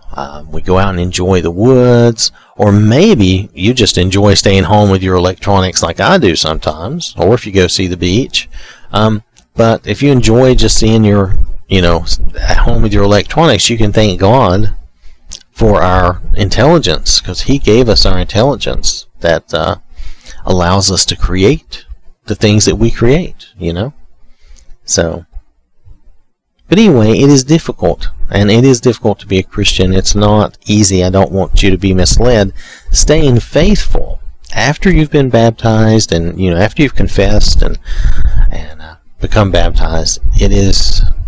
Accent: American